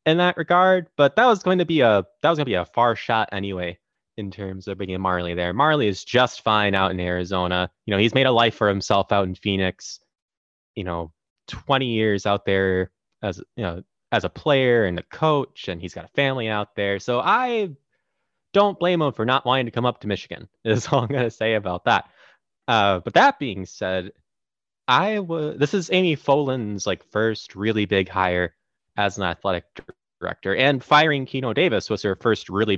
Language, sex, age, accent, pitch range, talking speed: English, male, 20-39, American, 95-135 Hz, 205 wpm